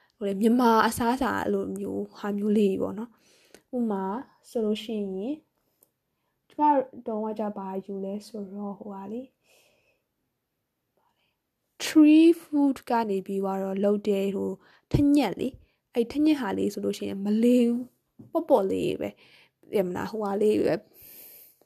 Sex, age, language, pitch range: female, 10-29, English, 200-260 Hz